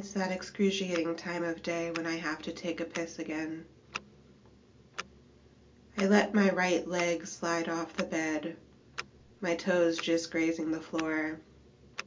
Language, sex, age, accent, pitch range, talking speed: English, female, 20-39, American, 155-175 Hz, 145 wpm